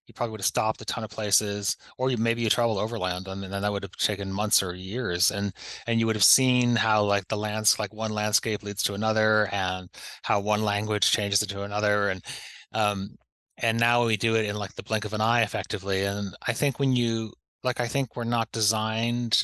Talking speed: 230 wpm